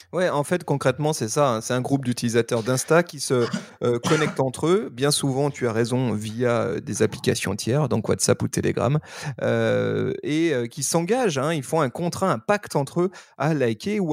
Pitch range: 120-155 Hz